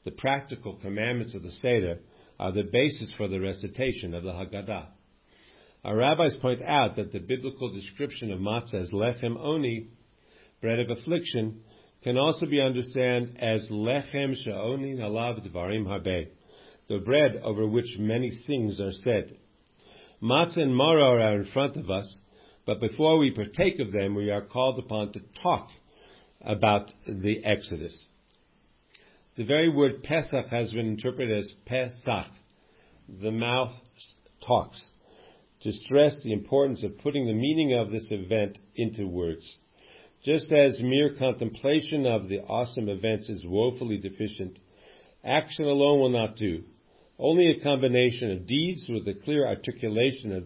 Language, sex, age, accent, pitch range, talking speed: English, male, 50-69, American, 100-130 Hz, 145 wpm